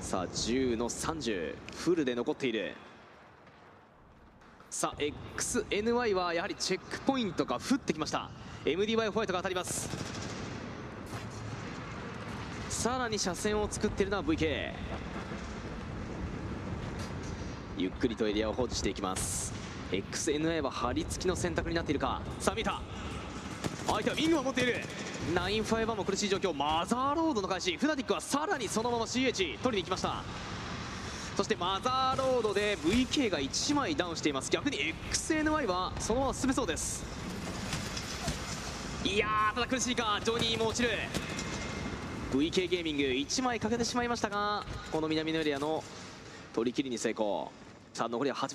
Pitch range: 145-245 Hz